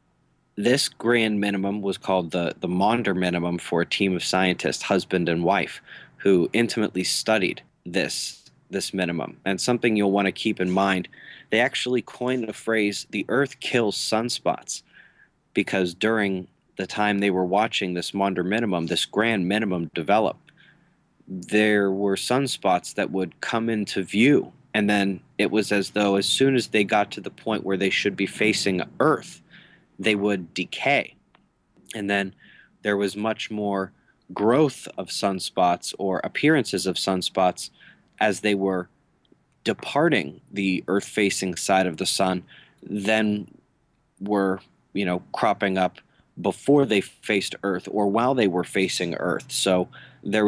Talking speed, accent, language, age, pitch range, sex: 150 wpm, American, English, 30-49, 95-110 Hz, male